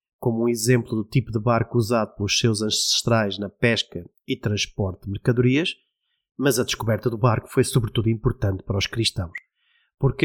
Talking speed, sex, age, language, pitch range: 170 wpm, male, 30-49, Portuguese, 110-140 Hz